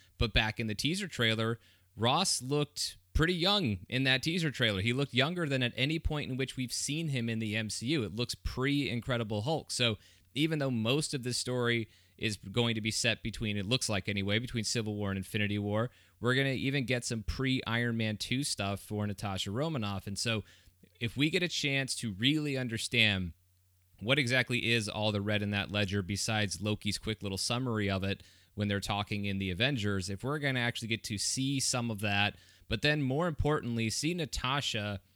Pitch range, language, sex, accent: 100-125 Hz, English, male, American